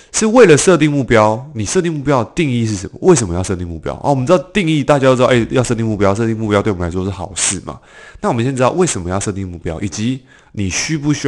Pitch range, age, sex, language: 95-140 Hz, 20-39, male, Chinese